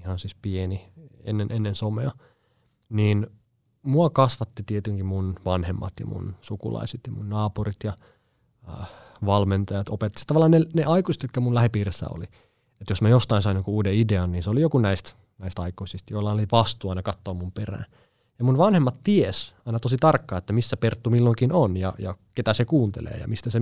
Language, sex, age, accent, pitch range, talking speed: Finnish, male, 30-49, native, 100-125 Hz, 185 wpm